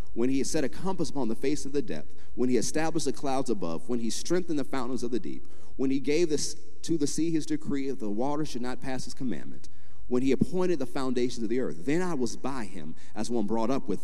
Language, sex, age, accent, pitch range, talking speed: English, male, 40-59, American, 95-140 Hz, 255 wpm